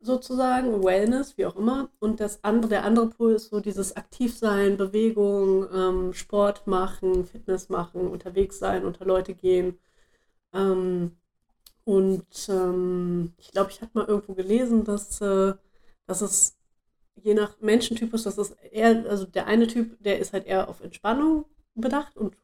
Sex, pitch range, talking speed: female, 185-230 Hz, 155 wpm